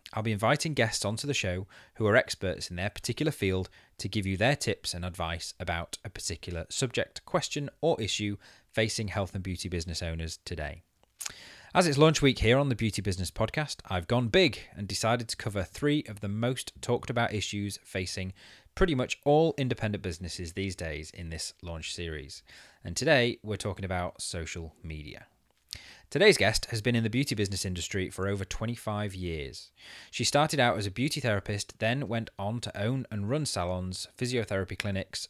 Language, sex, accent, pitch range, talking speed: English, male, British, 90-120 Hz, 185 wpm